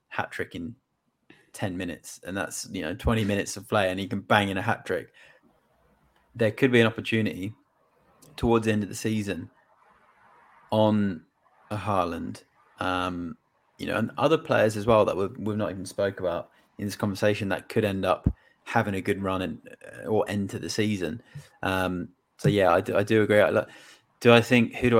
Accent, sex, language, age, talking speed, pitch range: British, male, English, 20-39, 190 wpm, 100-110 Hz